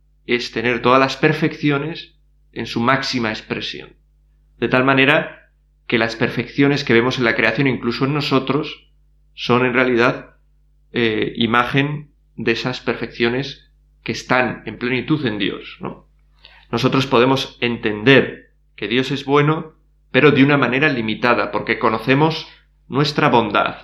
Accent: Spanish